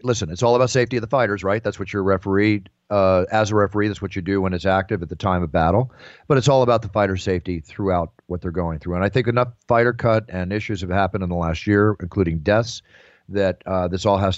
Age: 40-59